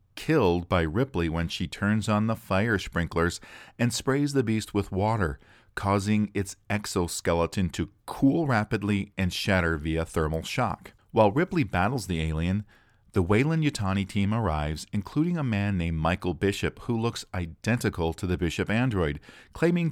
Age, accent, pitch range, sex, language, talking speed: 40-59, American, 90-115 Hz, male, English, 150 wpm